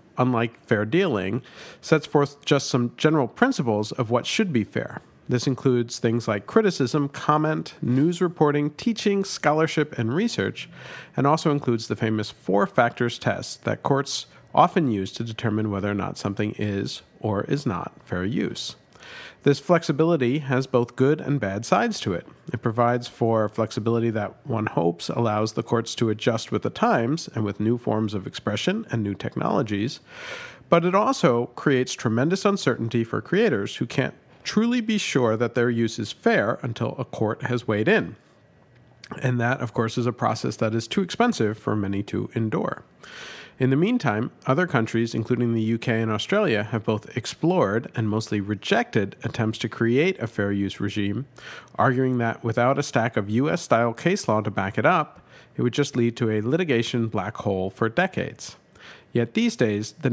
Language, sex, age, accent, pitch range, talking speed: English, male, 50-69, American, 110-145 Hz, 175 wpm